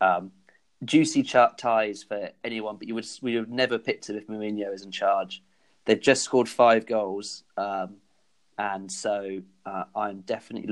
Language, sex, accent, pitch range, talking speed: English, male, British, 100-120 Hz, 170 wpm